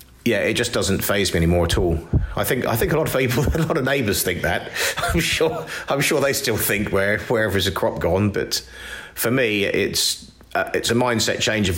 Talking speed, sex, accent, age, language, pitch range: 240 wpm, male, British, 40-59, English, 95-115 Hz